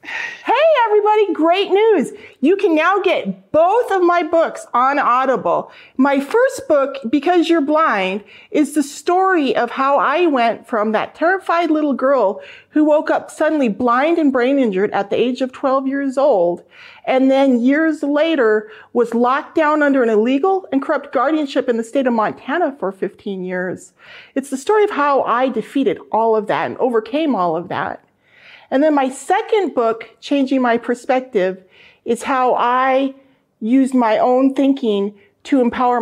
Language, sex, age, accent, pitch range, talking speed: English, female, 40-59, American, 220-310 Hz, 165 wpm